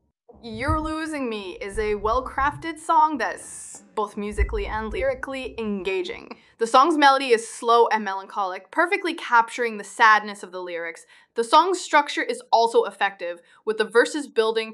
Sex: female